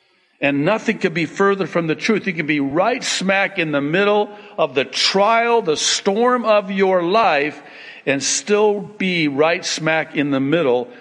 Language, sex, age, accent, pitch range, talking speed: English, male, 60-79, American, 150-220 Hz, 175 wpm